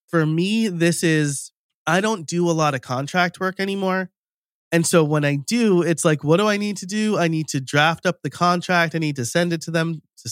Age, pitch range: 30-49, 135-175 Hz